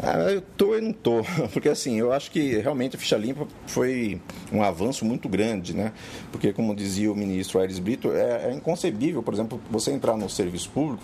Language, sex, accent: Portuguese, male, Brazilian